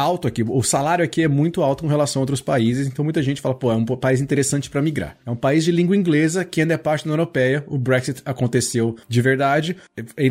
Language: Portuguese